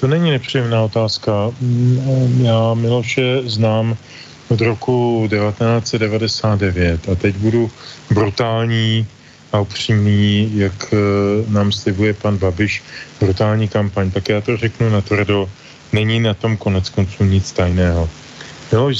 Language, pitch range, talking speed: Slovak, 100-120 Hz, 115 wpm